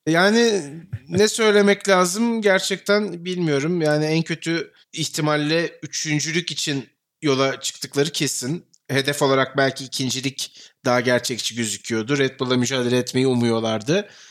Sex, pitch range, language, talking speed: male, 130-190 Hz, Turkish, 115 wpm